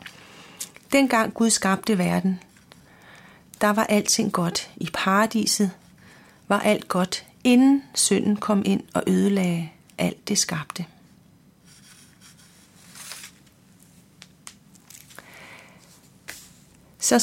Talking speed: 80 wpm